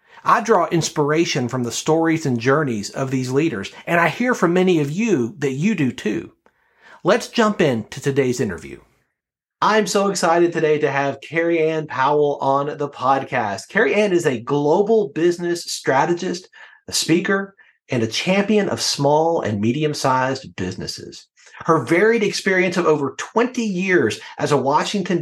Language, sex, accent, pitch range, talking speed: English, male, American, 135-185 Hz, 155 wpm